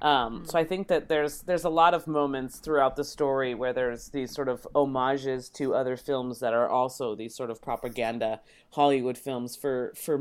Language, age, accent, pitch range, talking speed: English, 30-49, American, 135-165 Hz, 200 wpm